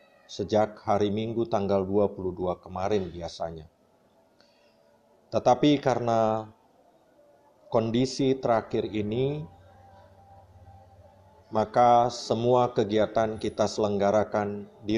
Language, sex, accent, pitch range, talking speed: Indonesian, male, native, 100-135 Hz, 70 wpm